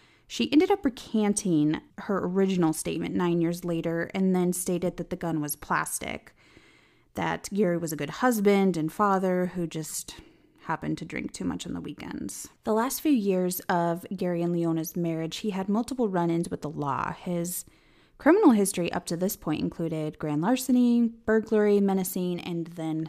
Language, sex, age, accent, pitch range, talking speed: English, female, 20-39, American, 165-210 Hz, 170 wpm